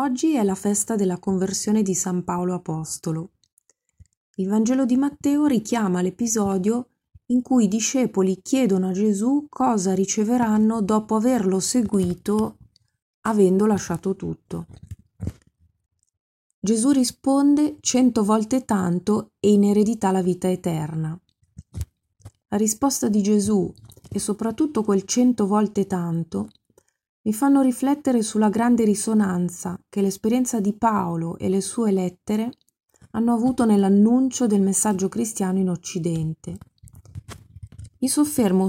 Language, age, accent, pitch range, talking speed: Italian, 30-49, native, 180-230 Hz, 120 wpm